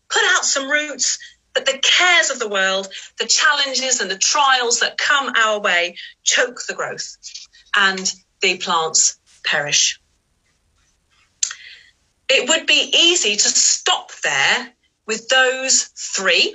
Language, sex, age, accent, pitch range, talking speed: English, female, 40-59, British, 200-290 Hz, 130 wpm